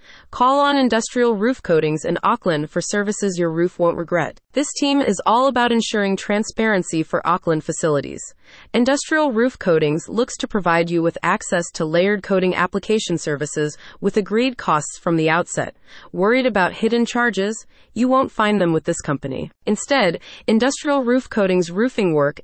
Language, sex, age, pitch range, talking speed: English, female, 30-49, 170-230 Hz, 160 wpm